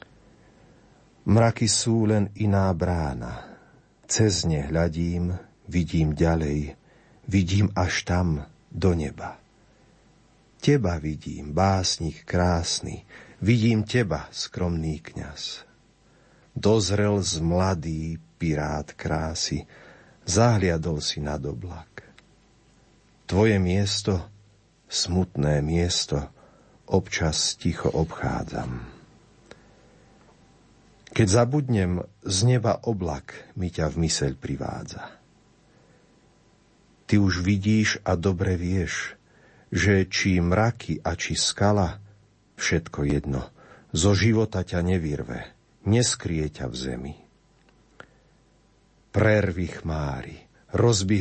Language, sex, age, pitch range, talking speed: Slovak, male, 50-69, 80-105 Hz, 85 wpm